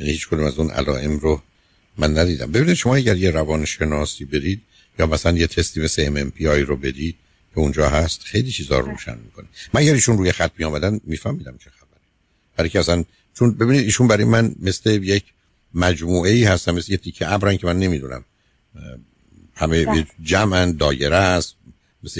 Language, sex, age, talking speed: Persian, male, 60-79, 165 wpm